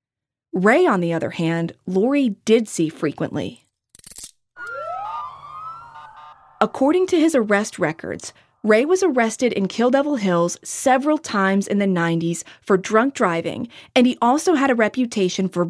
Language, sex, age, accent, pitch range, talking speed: English, female, 30-49, American, 180-245 Hz, 140 wpm